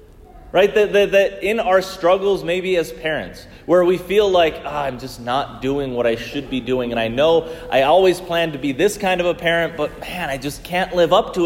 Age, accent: 30-49, American